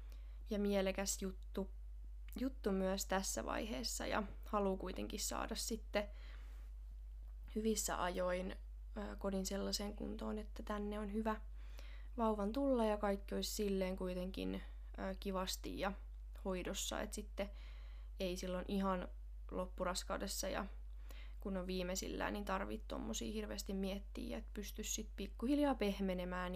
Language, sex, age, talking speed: Finnish, female, 20-39, 115 wpm